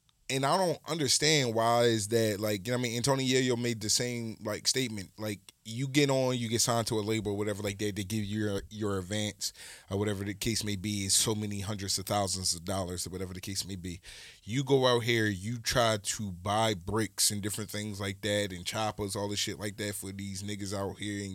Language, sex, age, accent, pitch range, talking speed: English, male, 20-39, American, 95-110 Hz, 245 wpm